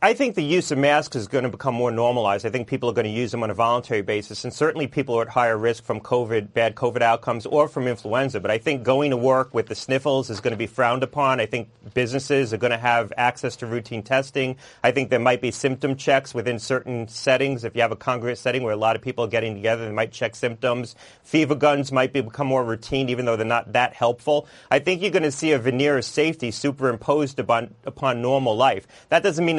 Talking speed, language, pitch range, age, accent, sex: 250 wpm, English, 120-140 Hz, 40-59, American, male